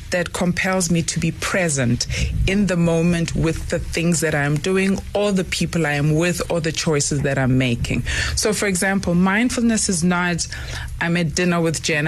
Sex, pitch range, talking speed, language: female, 140-170 Hz, 190 wpm, English